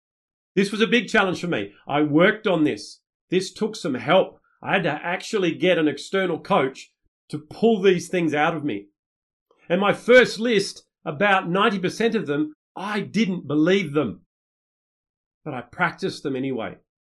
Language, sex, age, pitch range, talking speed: English, male, 40-59, 150-200 Hz, 165 wpm